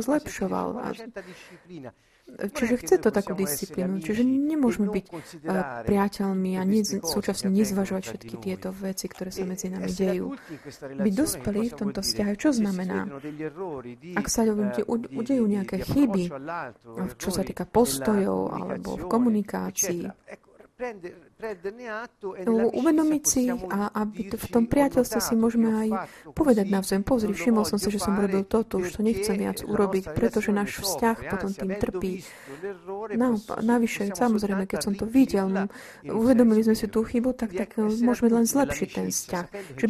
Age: 30-49